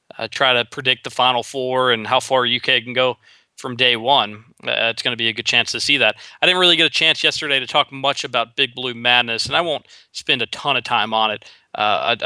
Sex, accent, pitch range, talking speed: male, American, 115-140 Hz, 260 wpm